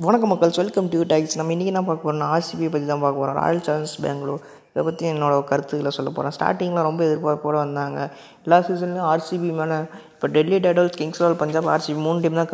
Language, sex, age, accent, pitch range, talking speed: Tamil, female, 20-39, native, 140-160 Hz, 200 wpm